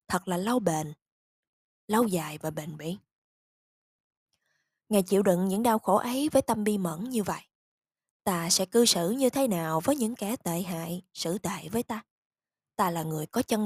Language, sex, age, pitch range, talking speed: Vietnamese, female, 20-39, 170-245 Hz, 190 wpm